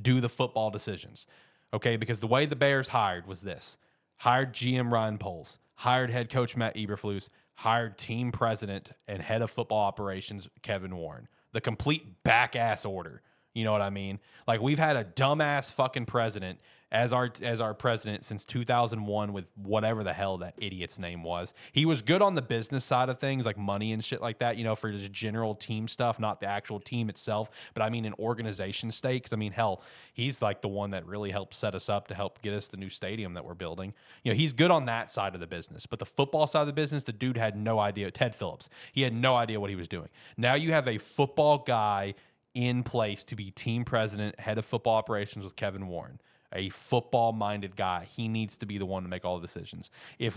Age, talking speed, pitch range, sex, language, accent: 30-49, 220 wpm, 105-130 Hz, male, English, American